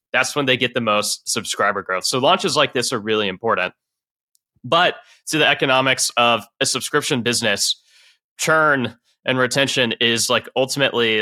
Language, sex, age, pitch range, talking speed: English, male, 20-39, 105-130 Hz, 155 wpm